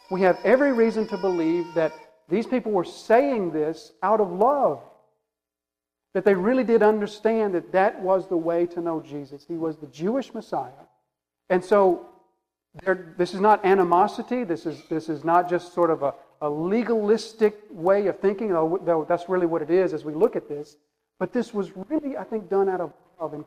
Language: English